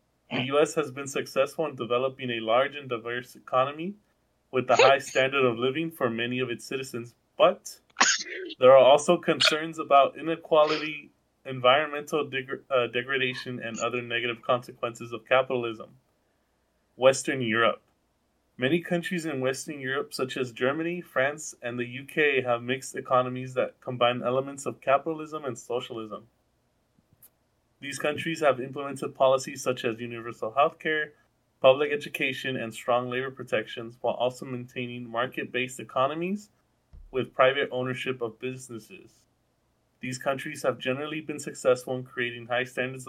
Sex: male